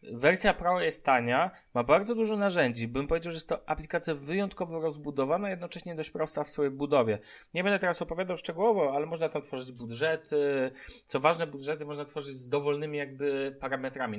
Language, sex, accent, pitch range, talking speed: Polish, male, native, 125-160 Hz, 175 wpm